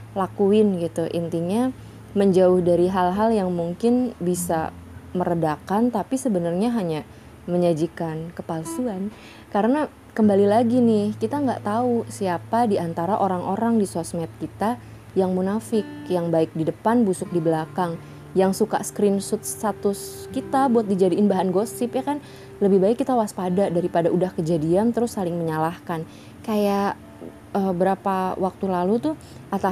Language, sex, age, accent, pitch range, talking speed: Indonesian, female, 20-39, native, 175-230 Hz, 130 wpm